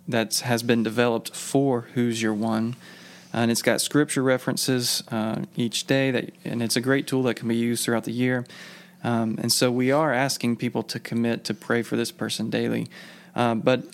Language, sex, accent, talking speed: English, male, American, 200 wpm